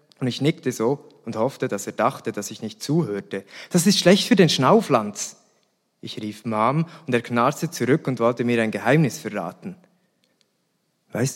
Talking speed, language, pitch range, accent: 175 wpm, German, 110-160 Hz, German